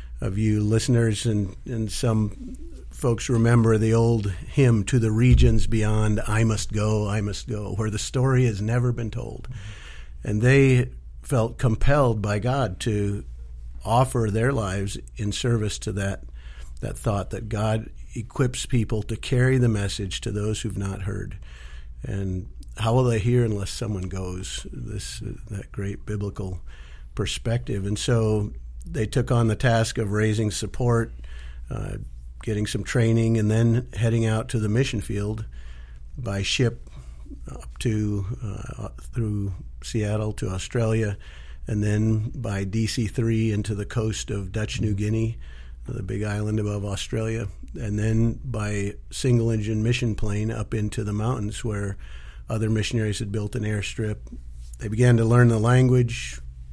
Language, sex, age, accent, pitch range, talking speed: English, male, 50-69, American, 100-115 Hz, 150 wpm